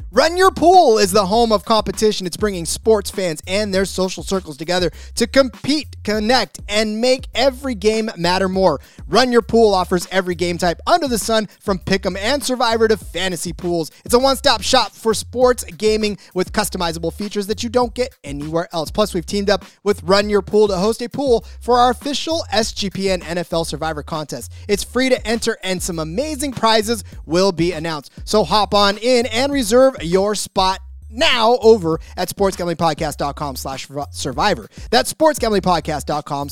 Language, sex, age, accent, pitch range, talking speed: English, male, 30-49, American, 170-235 Hz, 175 wpm